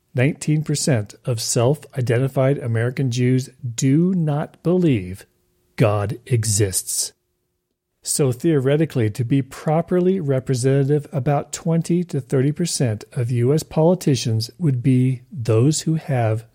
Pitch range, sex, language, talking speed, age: 115-155 Hz, male, English, 95 wpm, 40-59